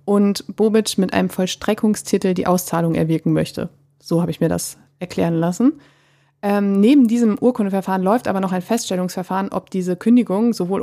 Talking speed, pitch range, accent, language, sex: 160 wpm, 180-230 Hz, German, German, female